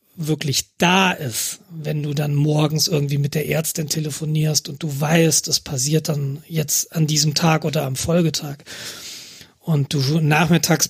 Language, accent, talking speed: German, German, 155 wpm